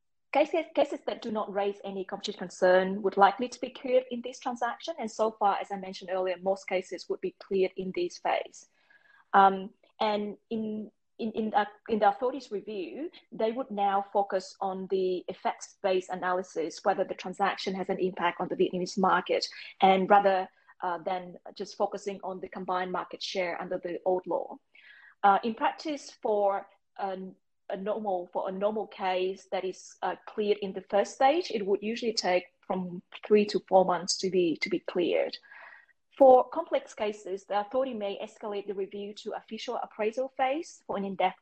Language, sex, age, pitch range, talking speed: English, female, 30-49, 185-225 Hz, 180 wpm